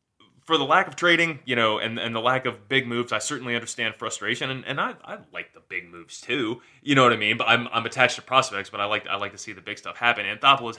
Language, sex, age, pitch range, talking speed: English, male, 20-39, 105-130 Hz, 285 wpm